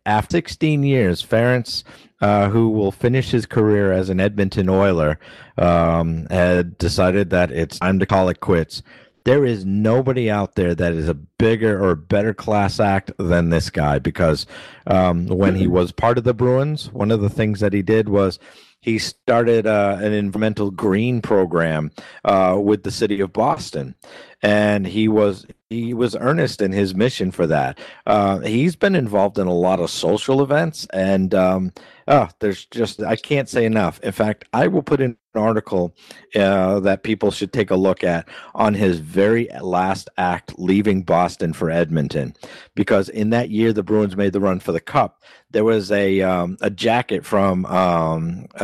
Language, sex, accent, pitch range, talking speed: English, male, American, 90-110 Hz, 180 wpm